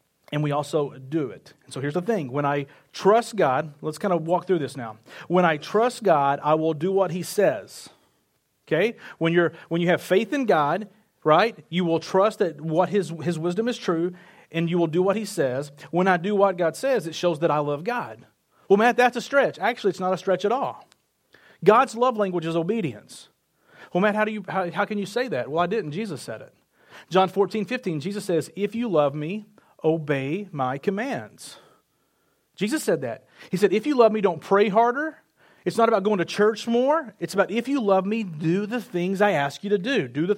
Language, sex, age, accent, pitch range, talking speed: English, male, 40-59, American, 165-220 Hz, 225 wpm